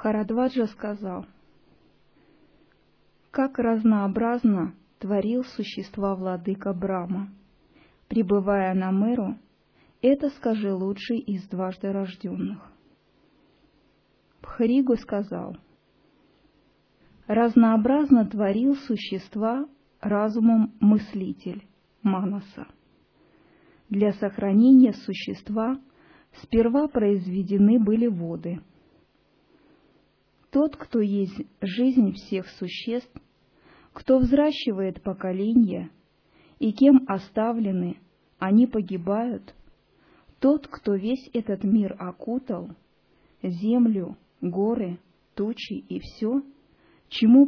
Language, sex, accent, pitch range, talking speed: Russian, female, native, 195-245 Hz, 75 wpm